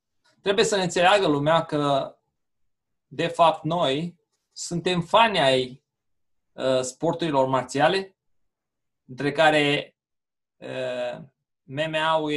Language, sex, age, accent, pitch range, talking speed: Romanian, male, 20-39, native, 140-185 Hz, 80 wpm